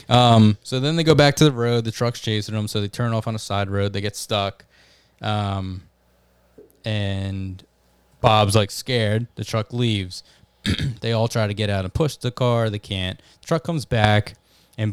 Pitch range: 100-120 Hz